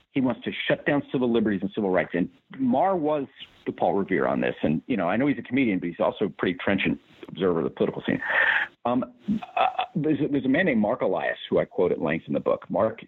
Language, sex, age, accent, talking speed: English, male, 50-69, American, 250 wpm